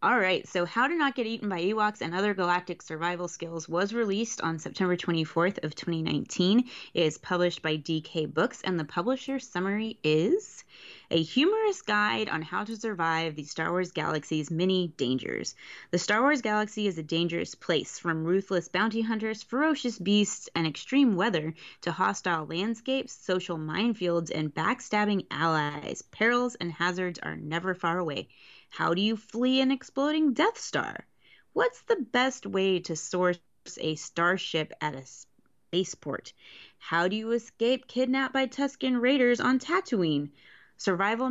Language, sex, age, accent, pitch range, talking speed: English, female, 20-39, American, 165-235 Hz, 155 wpm